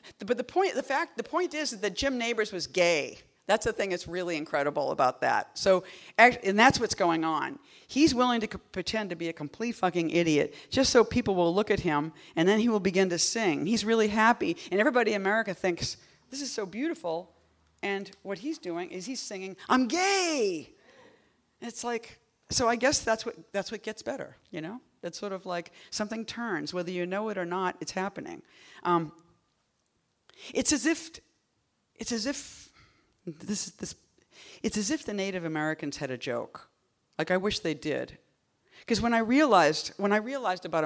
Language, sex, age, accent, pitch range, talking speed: English, female, 40-59, American, 165-230 Hz, 195 wpm